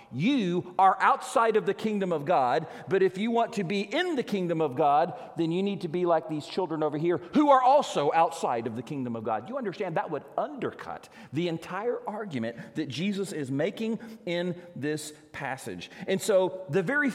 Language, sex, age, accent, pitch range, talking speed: English, male, 40-59, American, 130-195 Hz, 200 wpm